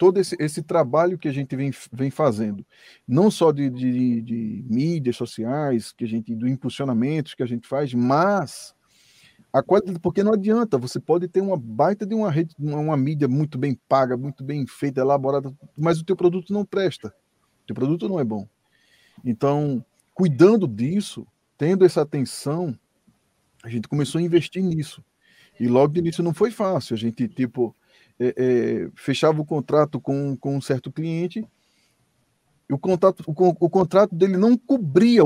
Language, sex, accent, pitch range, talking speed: Portuguese, male, Brazilian, 125-175 Hz, 175 wpm